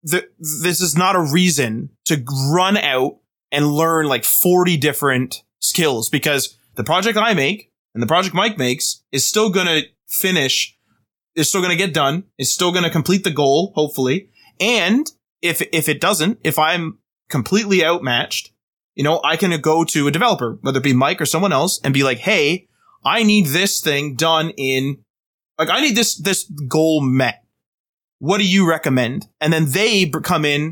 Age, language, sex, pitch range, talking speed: 20-39, English, male, 135-180 Hz, 180 wpm